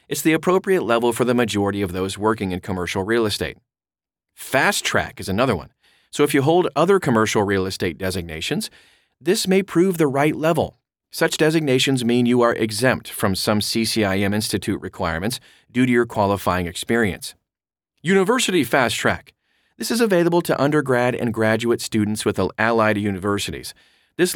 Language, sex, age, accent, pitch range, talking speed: English, male, 40-59, American, 100-140 Hz, 155 wpm